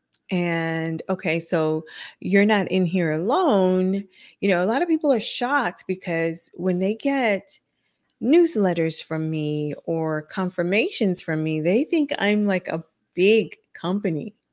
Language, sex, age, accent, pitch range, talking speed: English, female, 30-49, American, 165-205 Hz, 140 wpm